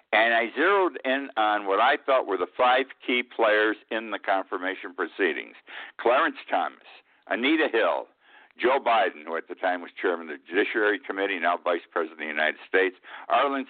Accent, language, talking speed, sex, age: American, English, 180 wpm, male, 60-79